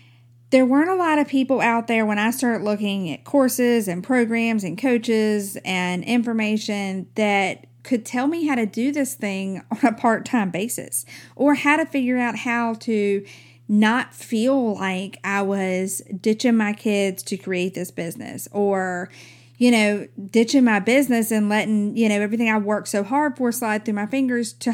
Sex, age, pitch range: female, 40-59, 190-245 Hz